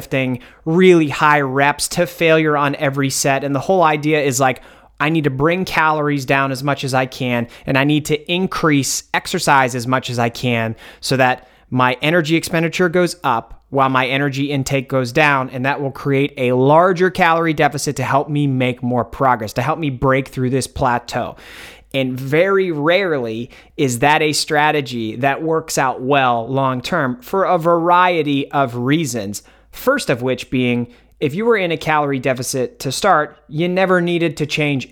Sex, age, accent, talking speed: male, 30-49, American, 180 wpm